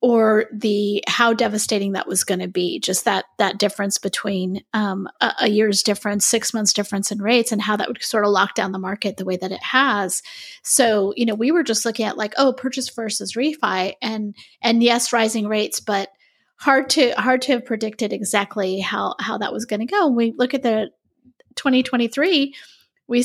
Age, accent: 30-49, American